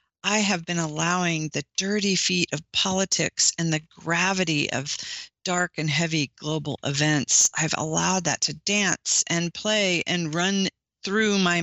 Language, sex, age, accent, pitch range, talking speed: English, female, 40-59, American, 155-195 Hz, 150 wpm